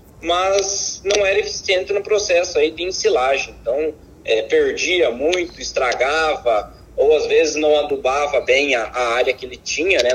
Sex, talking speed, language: male, 160 wpm, Portuguese